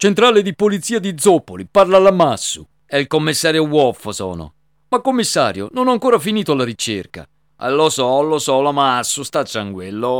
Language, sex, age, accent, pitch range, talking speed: Italian, male, 50-69, native, 115-170 Hz, 170 wpm